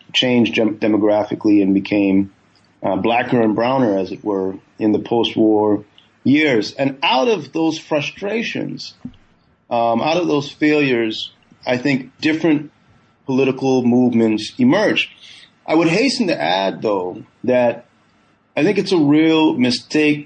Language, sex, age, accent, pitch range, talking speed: English, male, 30-49, American, 110-135 Hz, 130 wpm